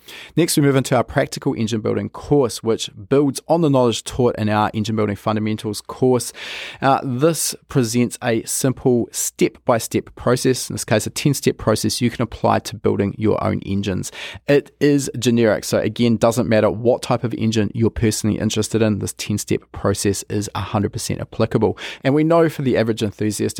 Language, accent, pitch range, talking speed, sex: English, Australian, 110-130 Hz, 190 wpm, male